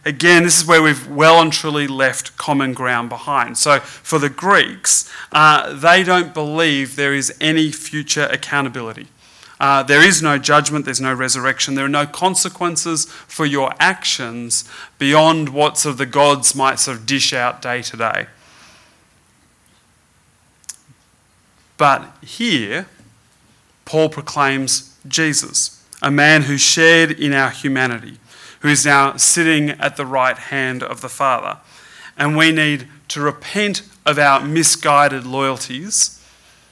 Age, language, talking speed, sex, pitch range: 30-49, English, 140 wpm, male, 130-150 Hz